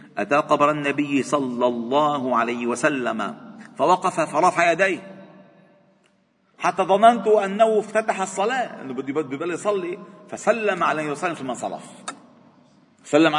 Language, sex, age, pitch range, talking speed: Arabic, male, 40-59, 110-165 Hz, 110 wpm